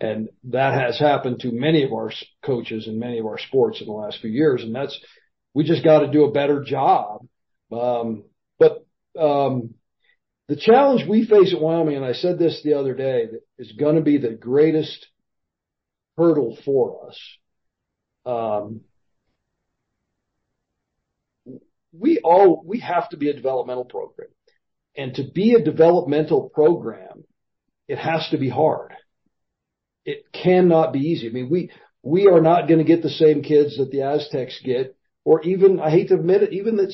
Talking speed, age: 170 wpm, 50-69